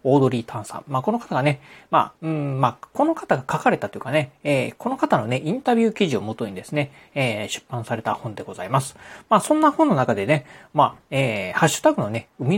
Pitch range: 125-185 Hz